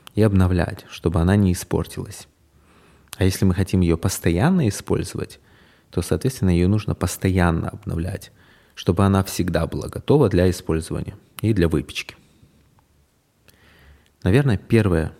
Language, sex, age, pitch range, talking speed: Russian, male, 20-39, 85-110 Hz, 120 wpm